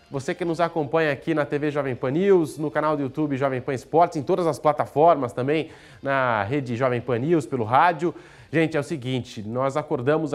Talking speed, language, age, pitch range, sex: 205 wpm, Portuguese, 20-39, 125-150 Hz, male